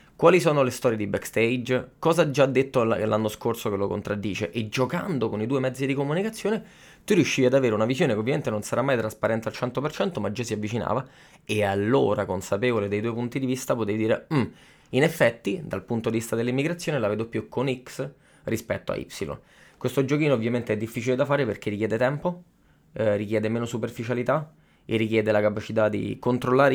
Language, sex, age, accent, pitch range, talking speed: Italian, male, 20-39, native, 105-130 Hz, 195 wpm